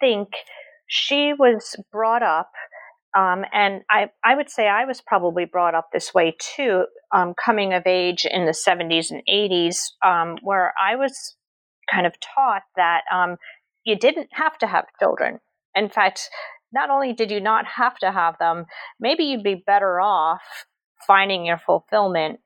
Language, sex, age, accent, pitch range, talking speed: English, female, 40-59, American, 170-240 Hz, 165 wpm